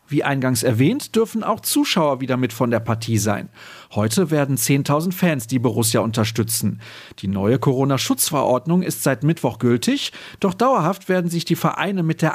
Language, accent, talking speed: German, German, 165 wpm